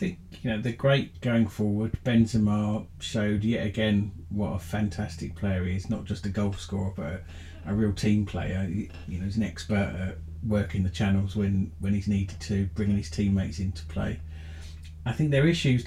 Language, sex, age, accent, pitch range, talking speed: English, male, 40-59, British, 95-115 Hz, 195 wpm